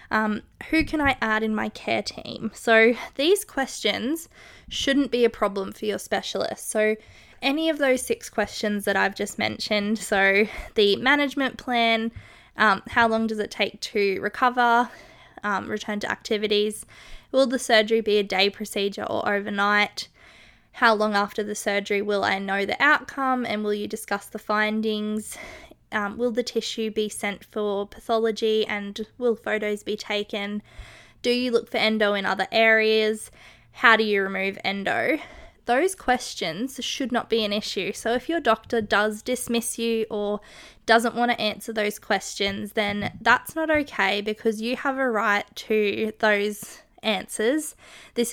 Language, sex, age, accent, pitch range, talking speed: English, female, 20-39, Australian, 210-245 Hz, 160 wpm